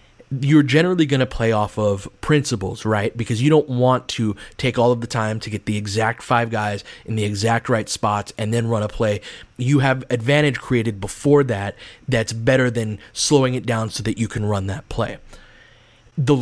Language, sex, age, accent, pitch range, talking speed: English, male, 30-49, American, 110-135 Hz, 200 wpm